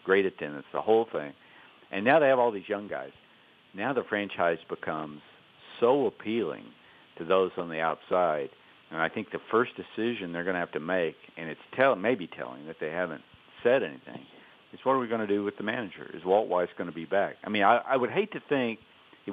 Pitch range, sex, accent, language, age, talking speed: 85-105 Hz, male, American, English, 50-69, 225 wpm